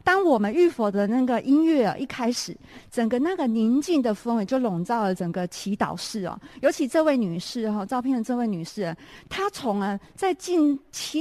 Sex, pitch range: female, 205-285 Hz